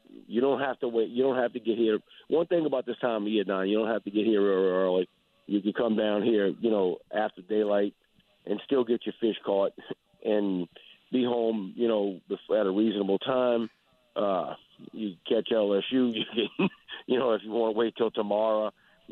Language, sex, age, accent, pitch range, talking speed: English, male, 50-69, American, 105-115 Hz, 205 wpm